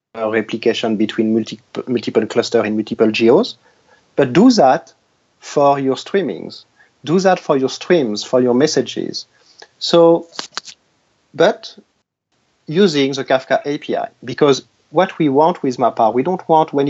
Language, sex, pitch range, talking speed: English, male, 120-155 Hz, 135 wpm